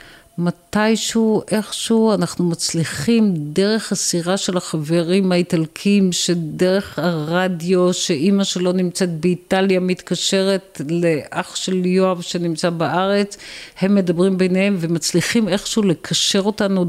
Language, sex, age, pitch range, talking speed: Hebrew, female, 50-69, 165-200 Hz, 100 wpm